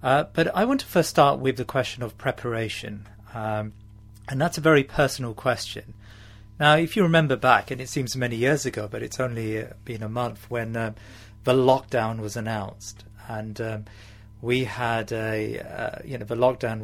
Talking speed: 185 wpm